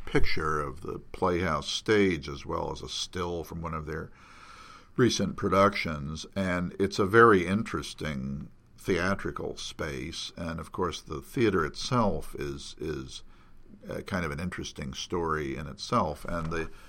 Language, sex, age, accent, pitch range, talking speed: English, male, 50-69, American, 75-90 Hz, 140 wpm